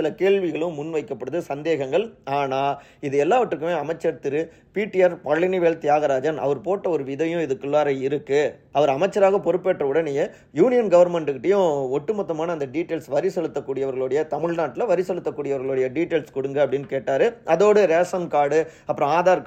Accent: native